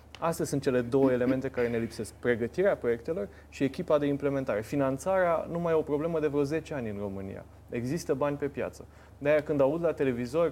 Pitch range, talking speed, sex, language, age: 130-170 Hz, 200 wpm, male, Romanian, 20-39